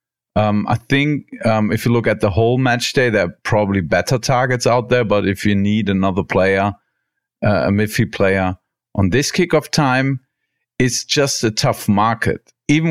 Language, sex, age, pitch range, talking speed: English, male, 50-69, 105-130 Hz, 180 wpm